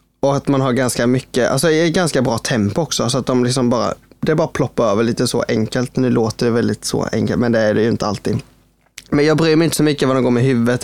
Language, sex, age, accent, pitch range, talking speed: Swedish, male, 20-39, native, 115-140 Hz, 270 wpm